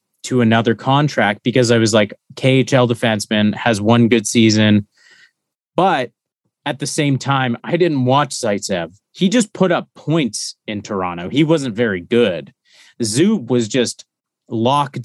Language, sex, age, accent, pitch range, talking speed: English, male, 30-49, American, 115-150 Hz, 150 wpm